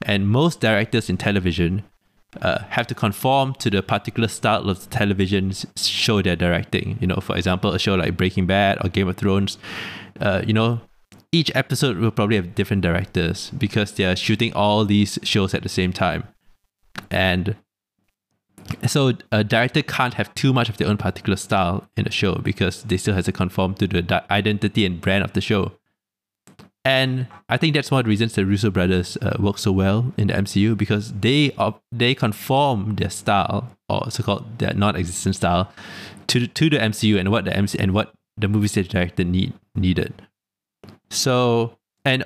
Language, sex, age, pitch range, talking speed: English, male, 20-39, 95-115 Hz, 185 wpm